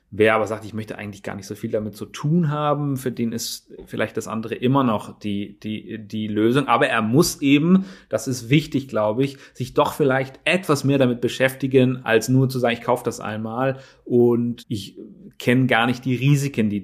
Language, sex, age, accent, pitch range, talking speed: German, male, 30-49, German, 110-135 Hz, 205 wpm